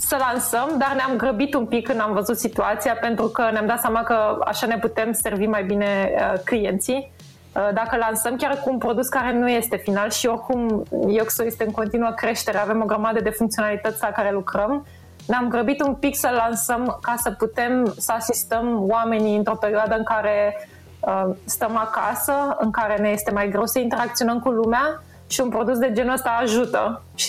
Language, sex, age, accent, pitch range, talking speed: Romanian, female, 20-39, native, 210-240 Hz, 185 wpm